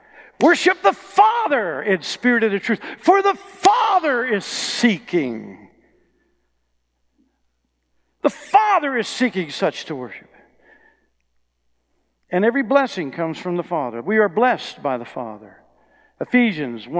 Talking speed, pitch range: 120 wpm, 205-290 Hz